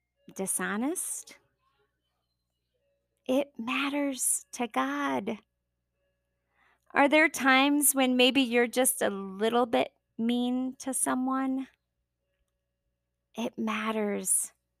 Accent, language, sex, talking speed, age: American, English, female, 80 wpm, 30-49